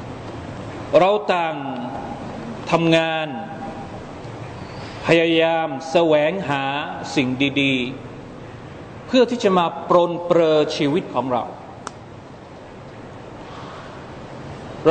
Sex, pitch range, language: male, 150-195 Hz, Thai